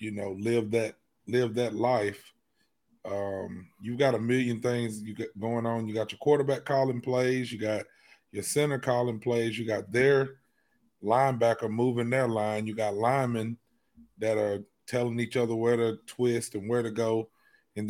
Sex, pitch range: male, 110-125 Hz